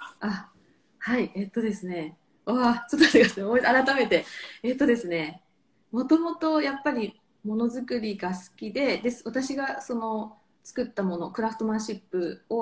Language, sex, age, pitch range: Japanese, female, 20-39, 190-250 Hz